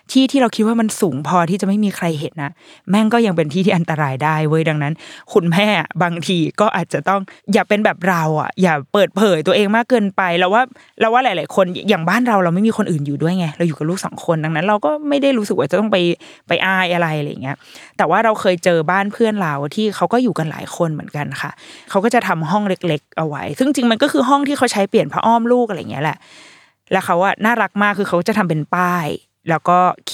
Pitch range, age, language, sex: 170-220 Hz, 20-39, Thai, female